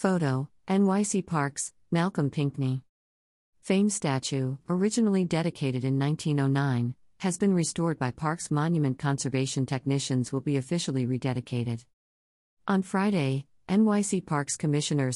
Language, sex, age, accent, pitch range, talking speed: English, female, 50-69, American, 130-160 Hz, 110 wpm